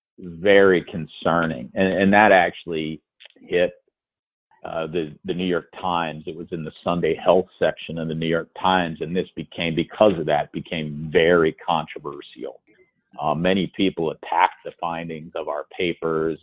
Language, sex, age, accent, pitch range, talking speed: English, male, 50-69, American, 80-95 Hz, 155 wpm